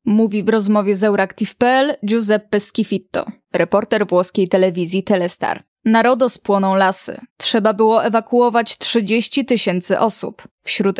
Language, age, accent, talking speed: Polish, 10-29, native, 115 wpm